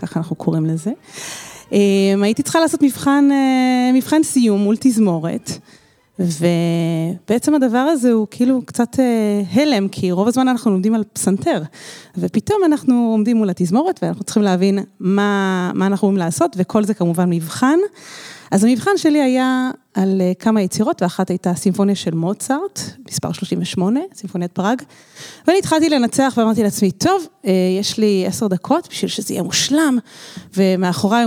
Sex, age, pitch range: female, 30-49, 185-265 Hz